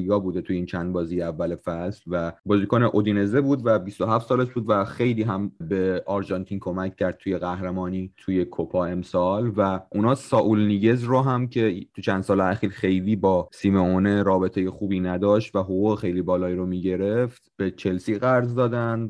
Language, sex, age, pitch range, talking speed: Persian, male, 30-49, 95-110 Hz, 175 wpm